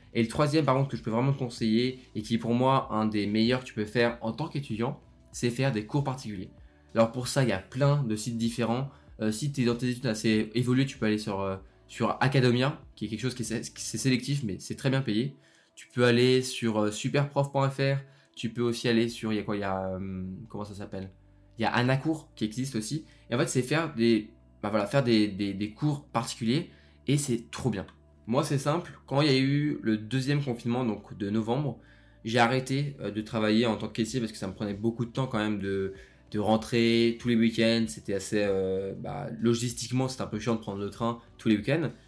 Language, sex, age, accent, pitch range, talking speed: French, male, 20-39, French, 105-130 Hz, 245 wpm